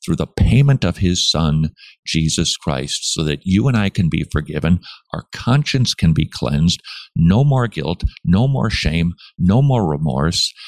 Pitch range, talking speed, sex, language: 80-100 Hz, 170 wpm, male, English